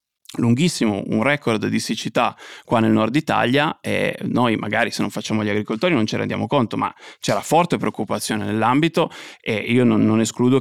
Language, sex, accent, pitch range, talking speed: Italian, male, native, 110-125 Hz, 175 wpm